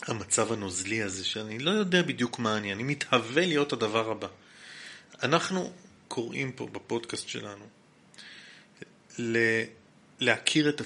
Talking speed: 115 wpm